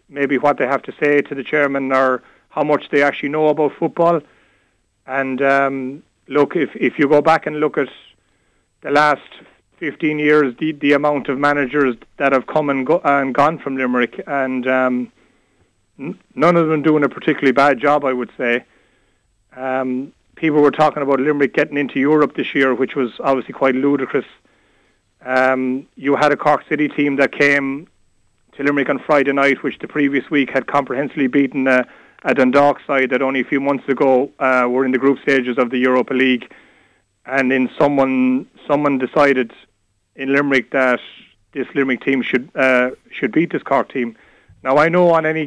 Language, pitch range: English, 130-145 Hz